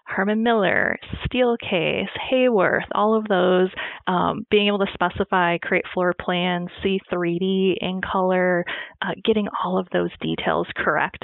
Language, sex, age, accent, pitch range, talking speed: English, female, 20-39, American, 180-220 Hz, 135 wpm